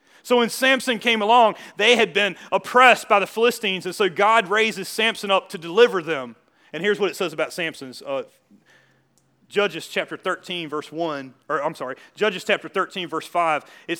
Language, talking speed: English, 185 wpm